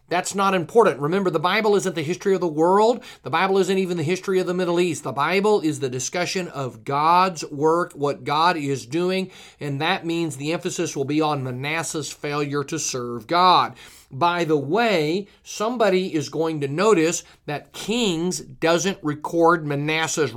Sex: male